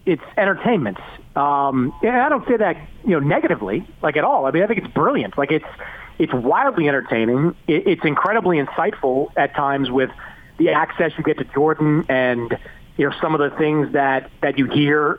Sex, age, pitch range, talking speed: male, 40-59, 145-200 Hz, 190 wpm